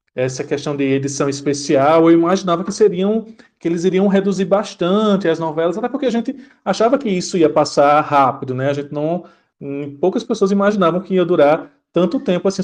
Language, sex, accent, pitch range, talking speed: Portuguese, male, Brazilian, 150-210 Hz, 180 wpm